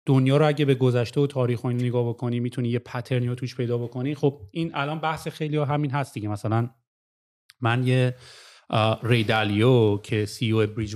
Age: 30-49